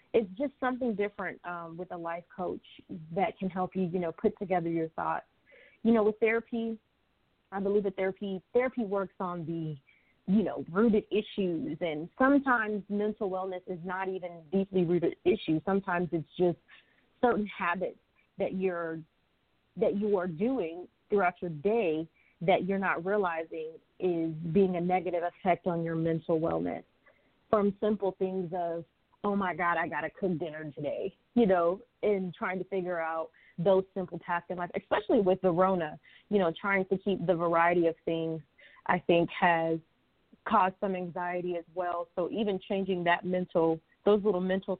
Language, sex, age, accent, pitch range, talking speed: English, female, 30-49, American, 175-205 Hz, 170 wpm